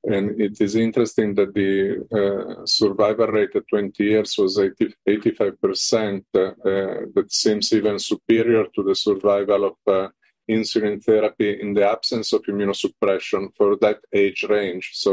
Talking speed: 150 wpm